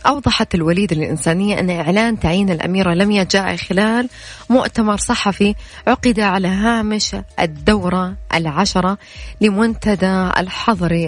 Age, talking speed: 20-39, 105 wpm